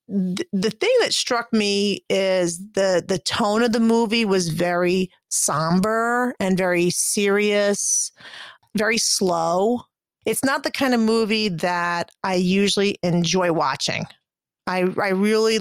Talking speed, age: 130 wpm, 30-49